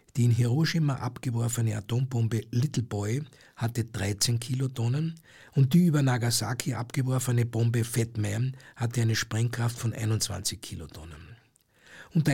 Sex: male